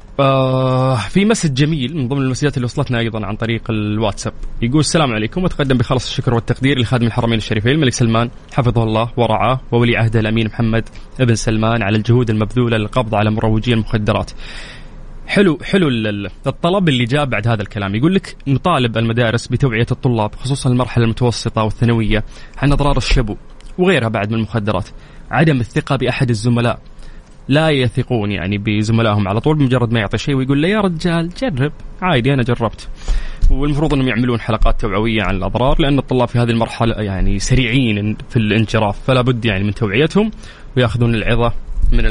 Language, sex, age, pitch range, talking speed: English, male, 20-39, 110-135 Hz, 160 wpm